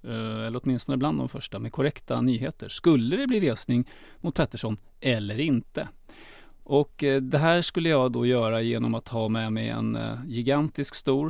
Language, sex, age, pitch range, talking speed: English, male, 30-49, 115-140 Hz, 165 wpm